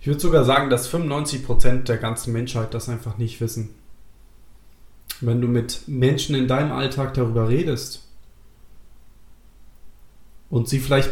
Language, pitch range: German, 115-140 Hz